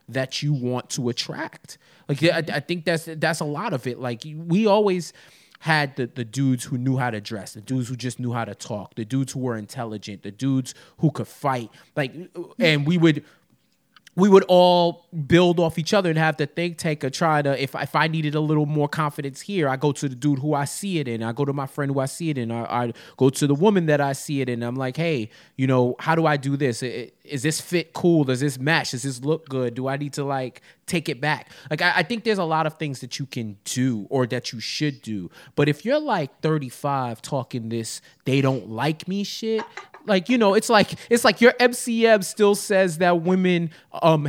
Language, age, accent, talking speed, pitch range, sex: English, 20-39, American, 240 wpm, 135-200 Hz, male